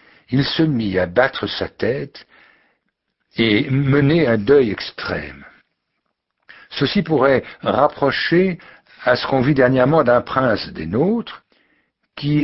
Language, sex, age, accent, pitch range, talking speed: French, male, 60-79, French, 130-180 Hz, 120 wpm